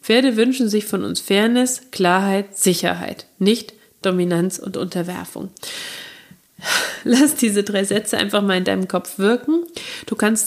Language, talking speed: German, 140 wpm